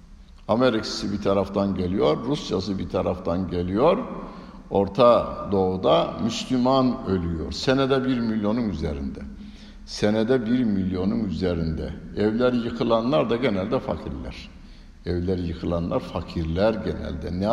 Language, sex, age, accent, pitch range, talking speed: Turkish, male, 60-79, native, 85-125 Hz, 105 wpm